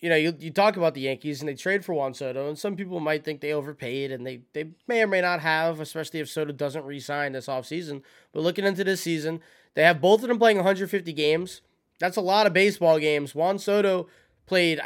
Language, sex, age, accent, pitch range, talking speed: English, male, 20-39, American, 145-195 Hz, 235 wpm